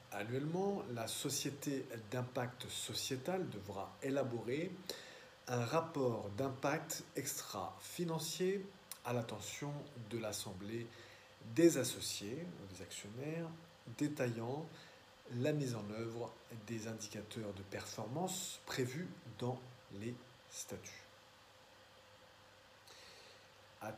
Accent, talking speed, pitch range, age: French, 85 wpm, 105-135 Hz, 50-69